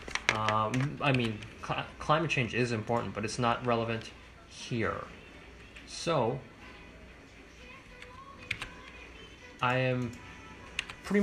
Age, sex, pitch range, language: 20-39, male, 110-145 Hz, English